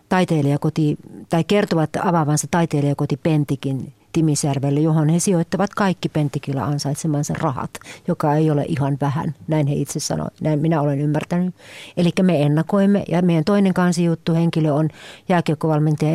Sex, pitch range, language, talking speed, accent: female, 145-170 Hz, Finnish, 140 wpm, native